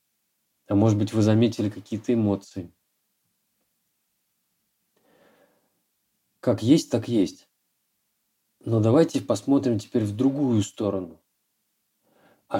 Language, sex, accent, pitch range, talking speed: Russian, male, native, 100-125 Hz, 90 wpm